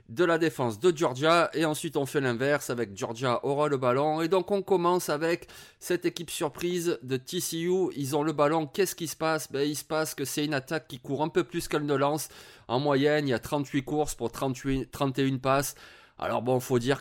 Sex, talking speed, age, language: male, 225 wpm, 30-49, French